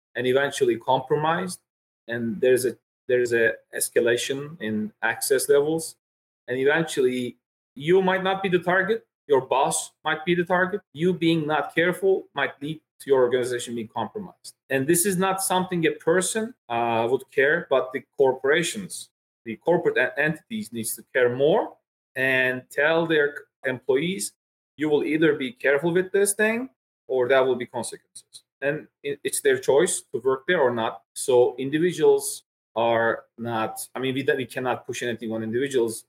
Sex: male